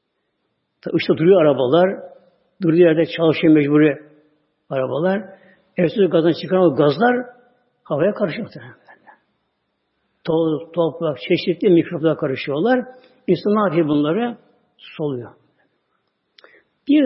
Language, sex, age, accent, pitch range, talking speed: Turkish, male, 60-79, native, 155-185 Hz, 90 wpm